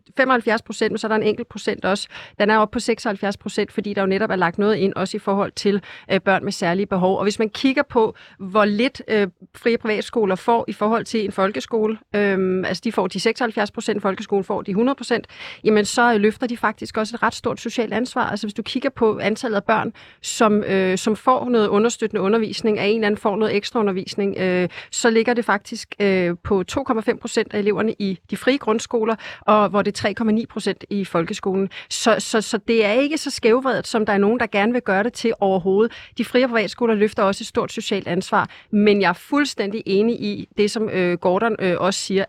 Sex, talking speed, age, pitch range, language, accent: female, 215 wpm, 40-59, 195-225 Hz, Danish, native